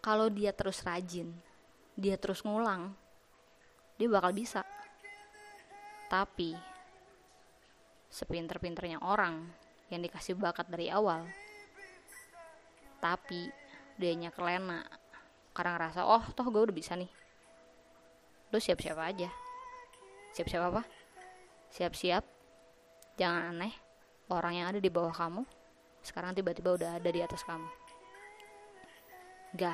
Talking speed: 105 wpm